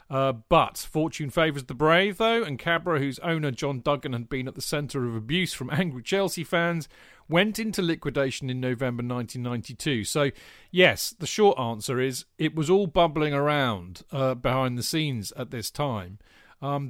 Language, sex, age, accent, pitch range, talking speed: English, male, 40-59, British, 125-160 Hz, 180 wpm